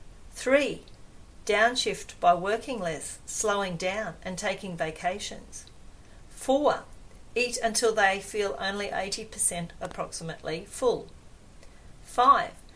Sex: female